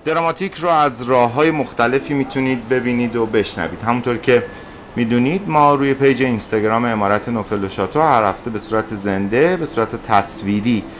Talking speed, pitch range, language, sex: 160 wpm, 105-140 Hz, Persian, male